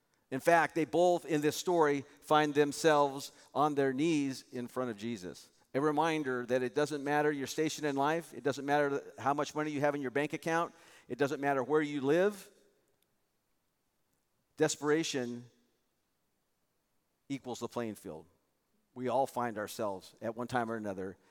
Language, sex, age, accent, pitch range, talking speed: English, male, 50-69, American, 135-160 Hz, 165 wpm